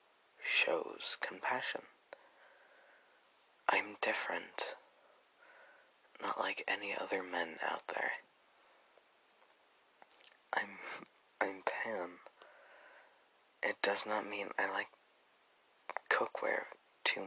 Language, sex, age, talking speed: English, male, 20-39, 75 wpm